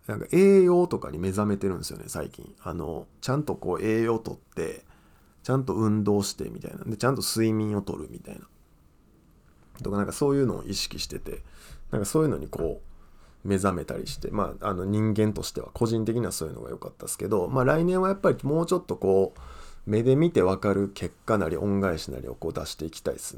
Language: Japanese